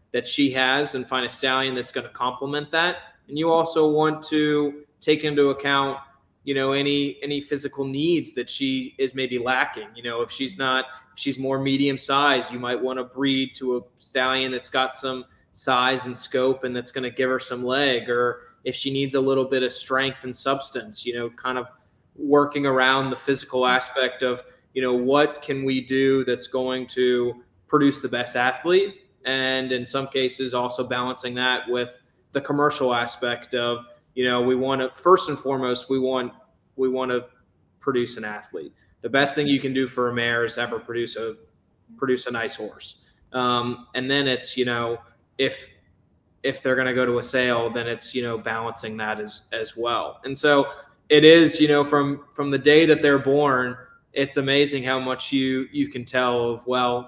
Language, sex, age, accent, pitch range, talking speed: English, male, 20-39, American, 125-140 Hz, 200 wpm